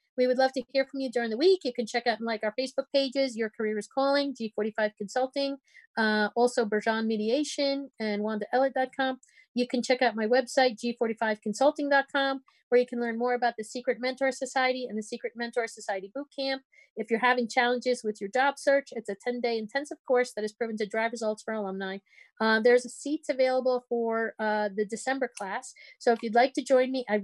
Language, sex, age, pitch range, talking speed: English, female, 40-59, 220-260 Hz, 205 wpm